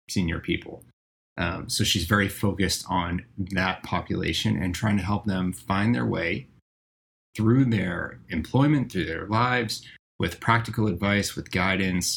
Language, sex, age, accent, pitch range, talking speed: English, male, 20-39, American, 85-110 Hz, 145 wpm